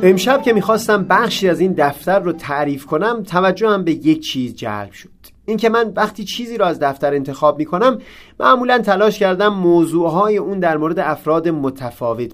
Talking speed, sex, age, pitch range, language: 170 wpm, male, 30-49, 150-210 Hz, Persian